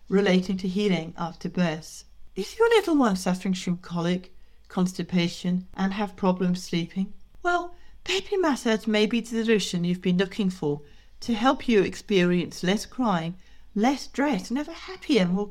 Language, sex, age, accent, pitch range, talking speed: English, female, 60-79, British, 175-230 Hz, 160 wpm